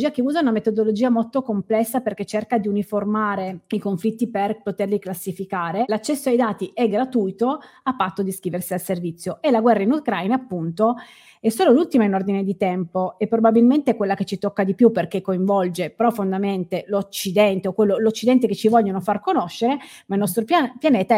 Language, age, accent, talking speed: Italian, 30-49, native, 180 wpm